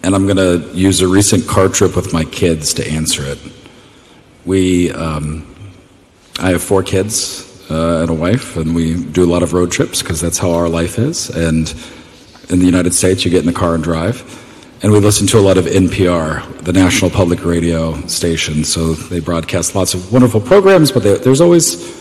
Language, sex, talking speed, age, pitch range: Greek, male, 205 wpm, 40-59, 85-105 Hz